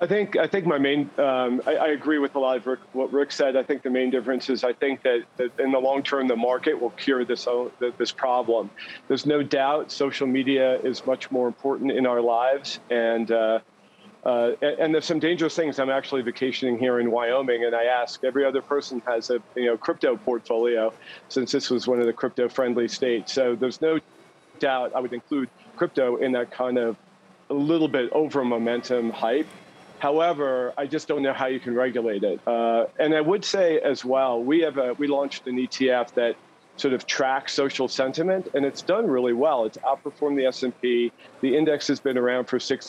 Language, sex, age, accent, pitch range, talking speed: English, male, 40-59, American, 125-140 Hz, 210 wpm